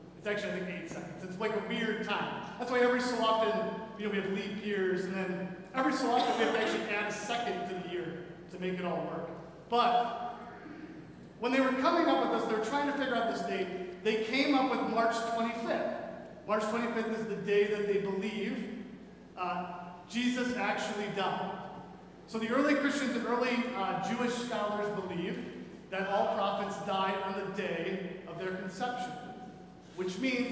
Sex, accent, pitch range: male, American, 185-225 Hz